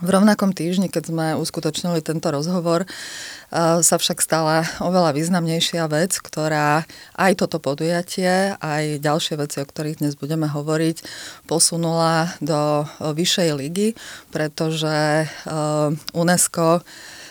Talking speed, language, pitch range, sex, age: 110 wpm, Slovak, 150-165 Hz, female, 30-49